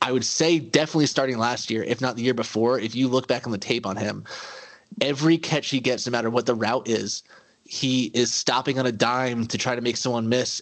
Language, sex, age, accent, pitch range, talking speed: English, male, 20-39, American, 115-135 Hz, 245 wpm